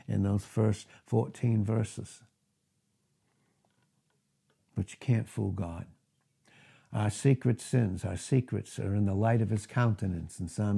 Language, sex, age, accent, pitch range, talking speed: English, male, 60-79, American, 105-130 Hz, 135 wpm